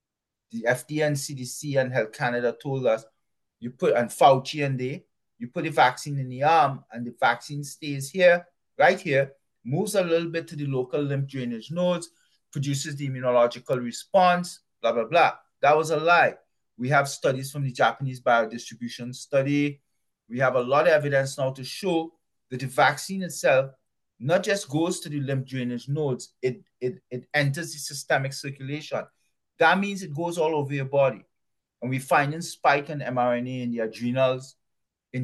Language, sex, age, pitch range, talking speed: English, male, 30-49, 125-165 Hz, 175 wpm